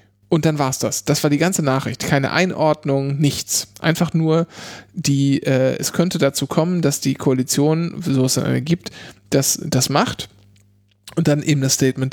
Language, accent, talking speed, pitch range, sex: German, German, 180 wpm, 130-160 Hz, male